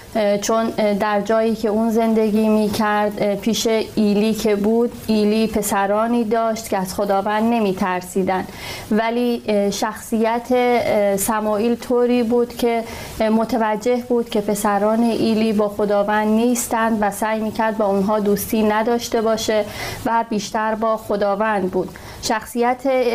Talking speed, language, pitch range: 125 wpm, Persian, 205-230 Hz